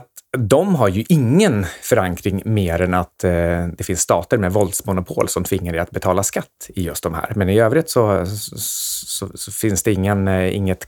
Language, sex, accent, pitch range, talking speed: Swedish, male, native, 90-130 Hz, 180 wpm